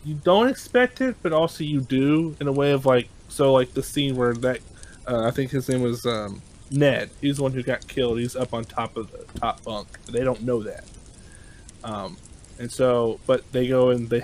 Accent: American